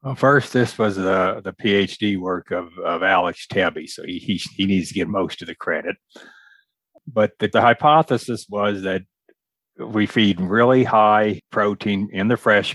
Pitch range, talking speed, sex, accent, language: 95-115 Hz, 175 wpm, male, American, English